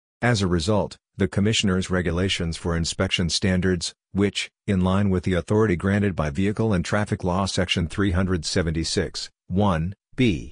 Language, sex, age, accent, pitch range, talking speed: English, male, 50-69, American, 90-105 Hz, 145 wpm